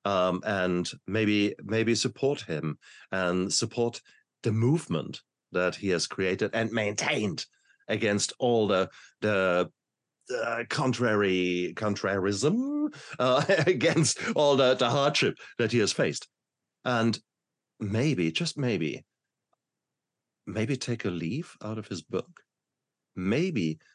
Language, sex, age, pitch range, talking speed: English, male, 50-69, 100-130 Hz, 115 wpm